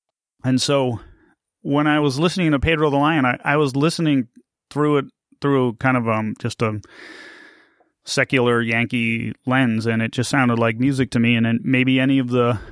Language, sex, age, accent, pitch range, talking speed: English, male, 30-49, American, 115-140 Hz, 185 wpm